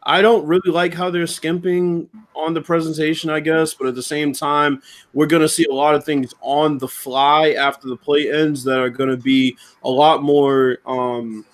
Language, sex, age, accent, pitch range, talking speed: English, male, 20-39, American, 125-155 Hz, 215 wpm